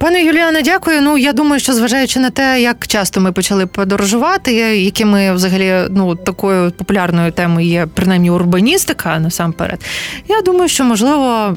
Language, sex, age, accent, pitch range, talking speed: Ukrainian, female, 20-39, native, 175-225 Hz, 150 wpm